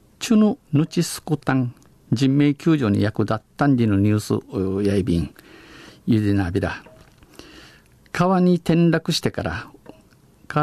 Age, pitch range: 50-69, 105-150 Hz